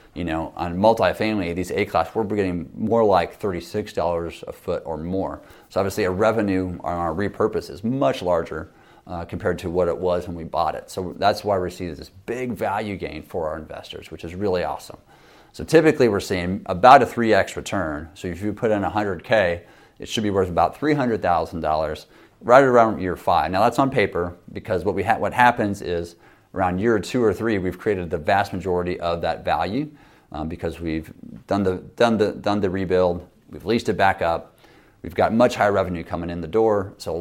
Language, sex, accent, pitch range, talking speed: English, male, American, 85-105 Hz, 200 wpm